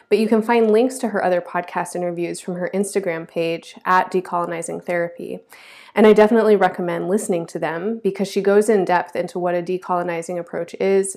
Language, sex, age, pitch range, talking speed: English, female, 20-39, 175-205 Hz, 190 wpm